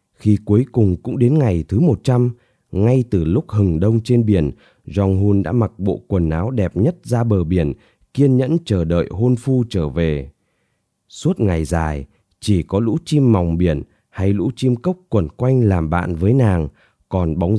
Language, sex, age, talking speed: Vietnamese, male, 20-39, 190 wpm